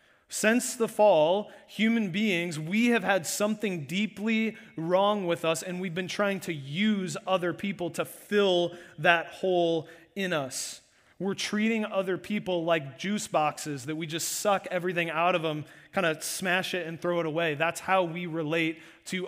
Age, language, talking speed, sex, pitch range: 30-49, English, 170 wpm, male, 160-190 Hz